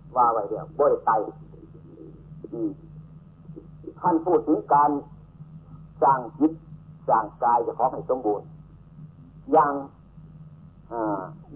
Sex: male